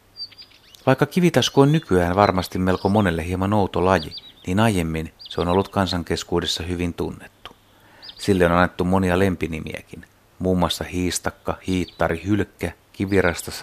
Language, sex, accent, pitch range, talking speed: Finnish, male, native, 85-105 Hz, 130 wpm